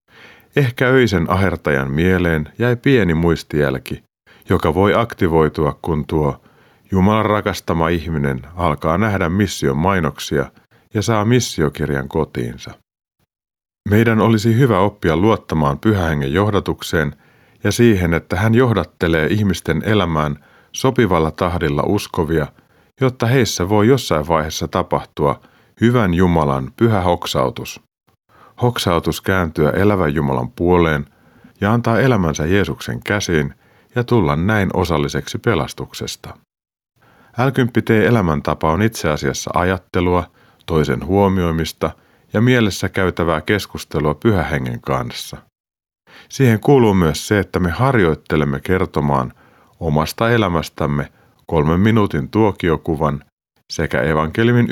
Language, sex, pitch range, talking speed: Finnish, male, 75-110 Hz, 105 wpm